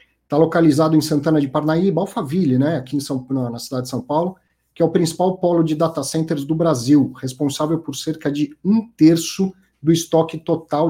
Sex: male